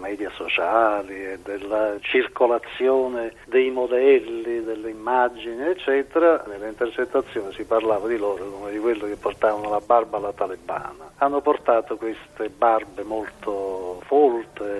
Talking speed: 120 wpm